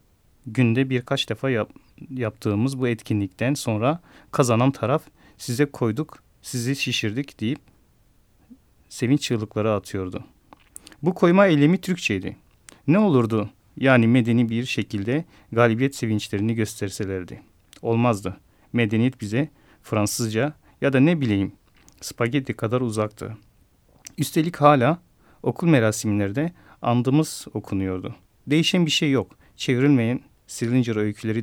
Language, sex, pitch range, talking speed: Turkish, male, 110-145 Hz, 105 wpm